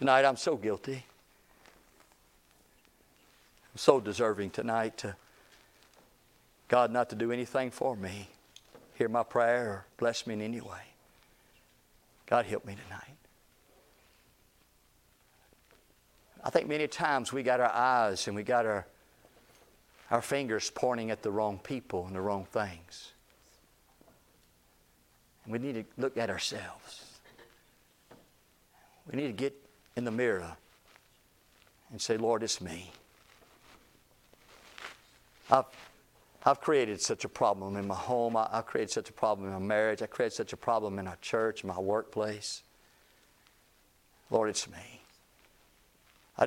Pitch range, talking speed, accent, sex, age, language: 95-120 Hz, 135 wpm, American, male, 50-69, English